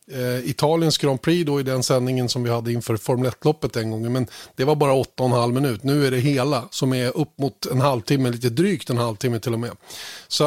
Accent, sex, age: native, male, 30-49